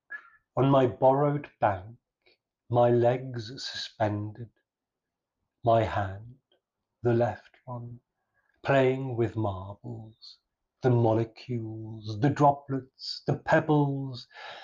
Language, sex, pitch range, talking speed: English, male, 115-145 Hz, 85 wpm